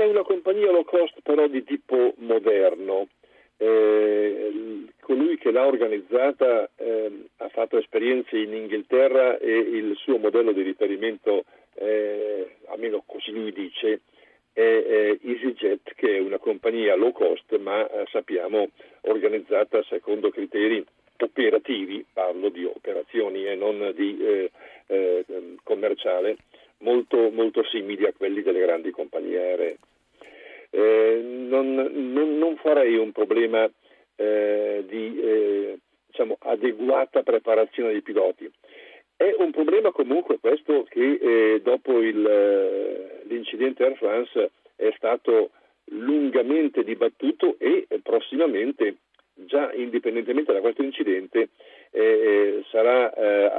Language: Italian